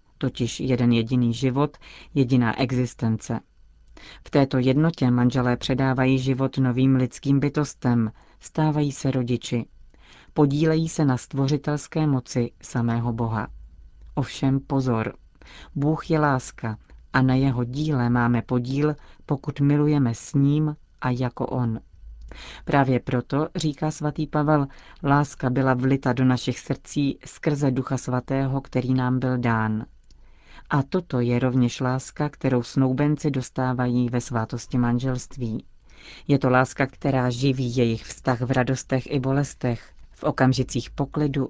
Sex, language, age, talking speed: female, Czech, 40-59, 125 wpm